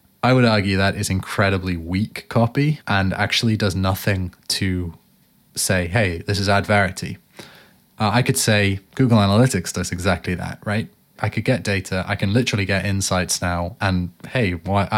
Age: 20-39